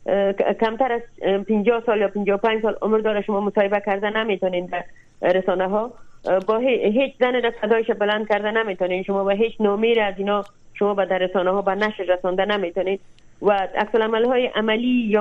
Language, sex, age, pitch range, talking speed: Persian, female, 30-49, 195-230 Hz, 175 wpm